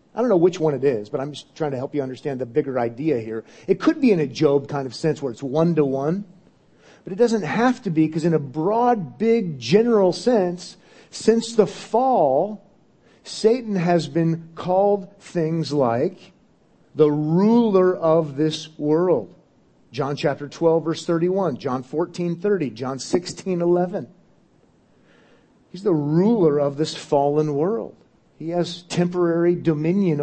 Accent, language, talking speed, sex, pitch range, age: American, English, 160 wpm, male, 140-180 Hz, 40-59